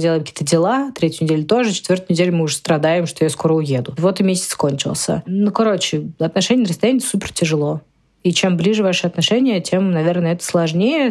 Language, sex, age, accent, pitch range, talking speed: Russian, female, 20-39, native, 160-190 Hz, 190 wpm